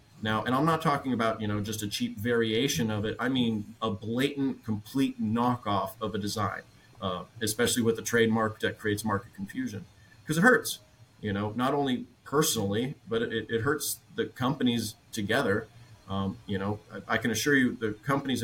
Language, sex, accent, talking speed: English, male, American, 185 wpm